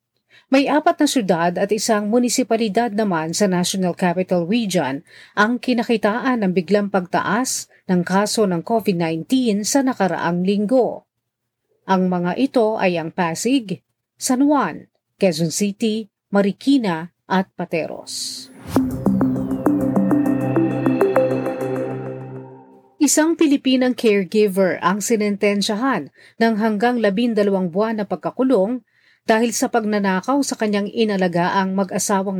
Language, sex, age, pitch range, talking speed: Filipino, female, 40-59, 180-230 Hz, 105 wpm